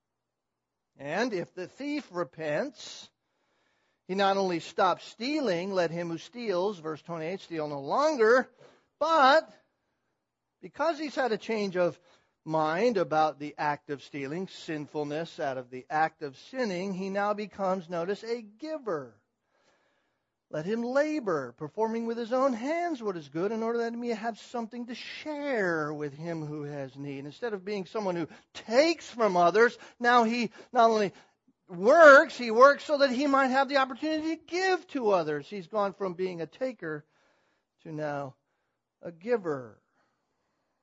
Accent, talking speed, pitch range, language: American, 155 wpm, 150-240 Hz, English